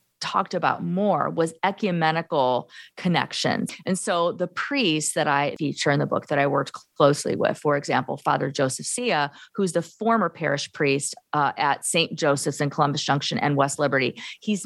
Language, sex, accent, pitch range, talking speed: English, female, American, 145-185 Hz, 170 wpm